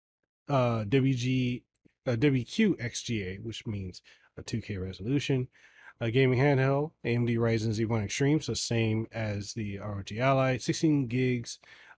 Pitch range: 100-120 Hz